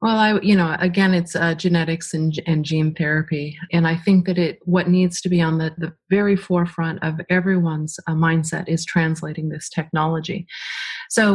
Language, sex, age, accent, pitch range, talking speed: English, female, 30-49, American, 165-185 Hz, 185 wpm